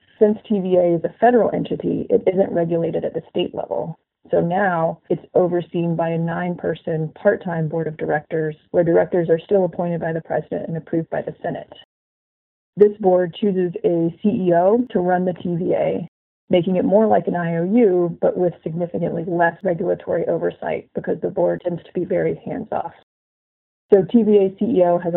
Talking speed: 165 wpm